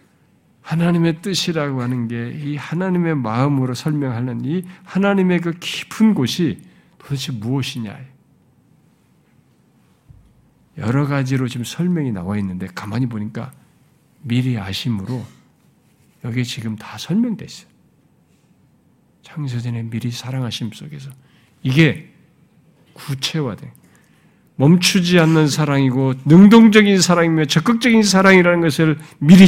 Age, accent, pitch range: 50-69, native, 125-170 Hz